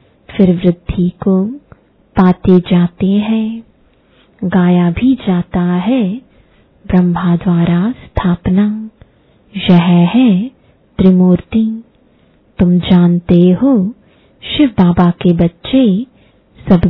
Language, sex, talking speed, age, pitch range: English, female, 80 wpm, 20-39, 180-220 Hz